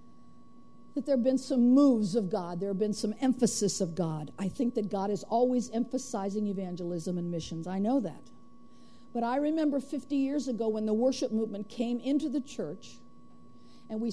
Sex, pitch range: female, 210-275 Hz